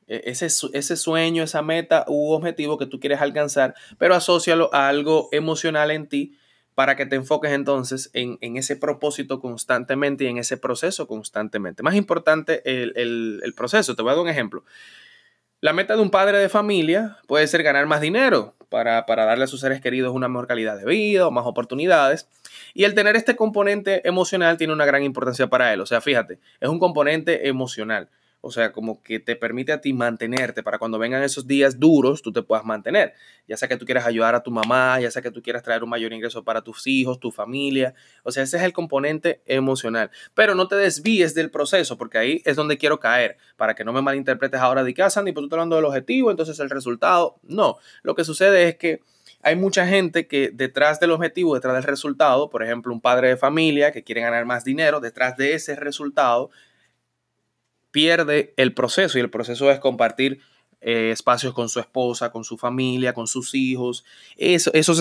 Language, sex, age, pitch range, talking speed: Spanish, male, 20-39, 125-160 Hz, 205 wpm